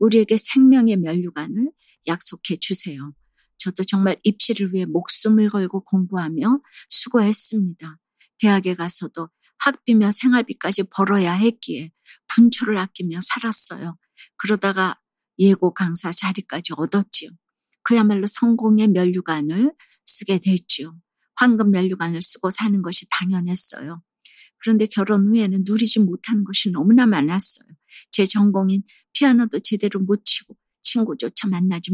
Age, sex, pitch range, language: 50-69, female, 180-220 Hz, Korean